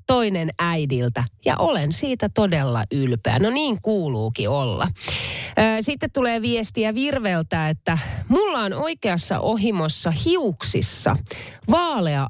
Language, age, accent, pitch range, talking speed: Finnish, 30-49, native, 135-220 Hz, 105 wpm